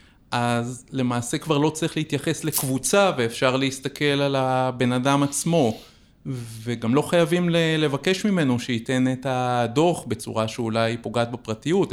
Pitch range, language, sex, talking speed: 120-150 Hz, Hebrew, male, 125 wpm